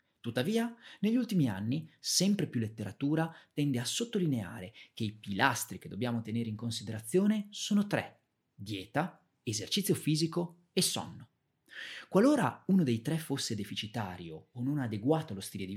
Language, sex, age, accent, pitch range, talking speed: Italian, male, 30-49, native, 110-170 Hz, 140 wpm